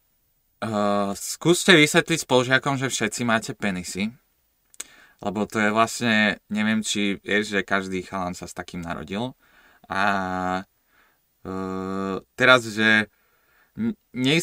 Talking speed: 110 wpm